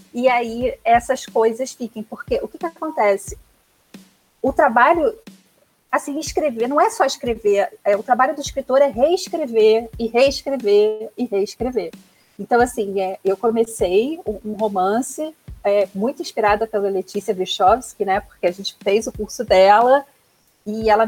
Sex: female